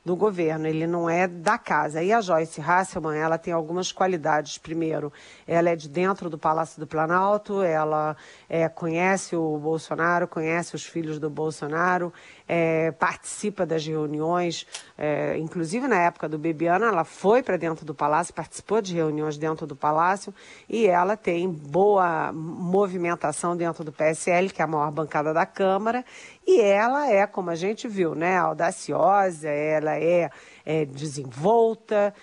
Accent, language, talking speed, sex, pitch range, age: Brazilian, Portuguese, 150 wpm, female, 155-190 Hz, 40-59